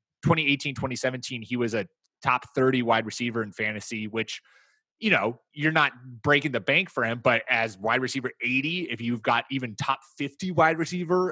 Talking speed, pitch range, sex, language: 180 wpm, 120-160 Hz, male, English